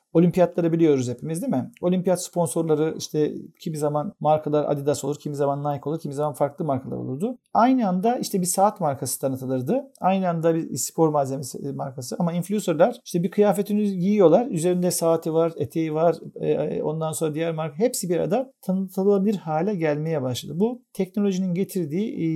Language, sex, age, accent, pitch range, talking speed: Turkish, male, 50-69, native, 150-185 Hz, 160 wpm